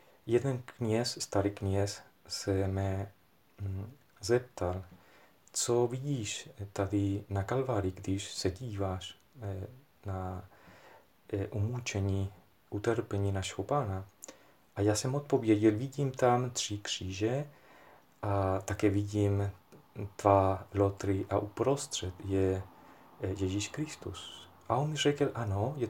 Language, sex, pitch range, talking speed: Czech, male, 95-120 Hz, 100 wpm